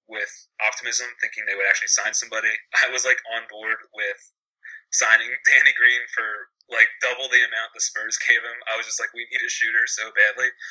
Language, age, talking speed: English, 20-39, 200 wpm